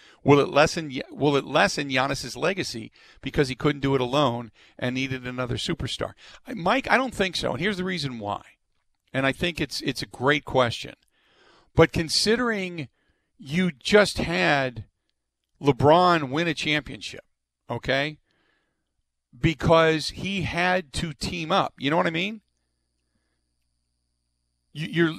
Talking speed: 140 wpm